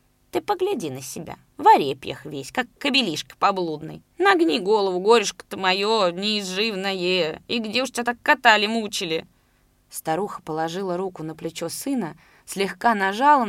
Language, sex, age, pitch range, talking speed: Russian, female, 20-39, 160-210 Hz, 135 wpm